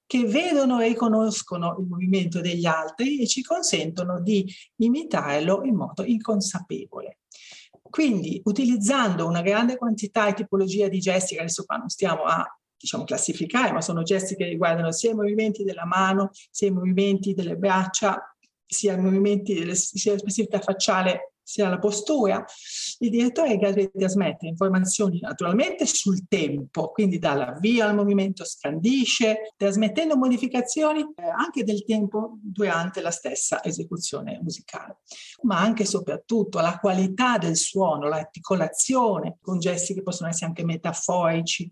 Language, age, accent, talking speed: Italian, 40-59, native, 140 wpm